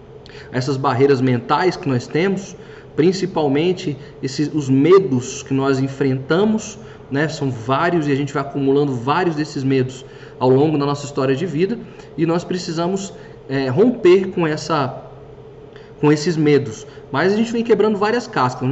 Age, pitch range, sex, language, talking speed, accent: 20-39, 140-200 Hz, male, Portuguese, 155 wpm, Brazilian